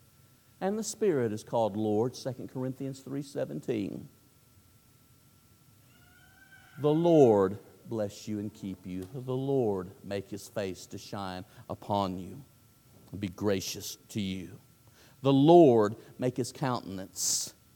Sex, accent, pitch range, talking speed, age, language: male, American, 110-145 Hz, 120 wpm, 50-69, English